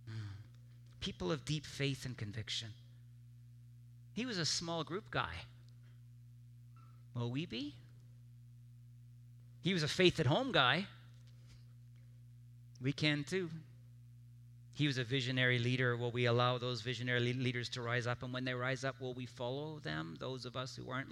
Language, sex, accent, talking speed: English, male, American, 145 wpm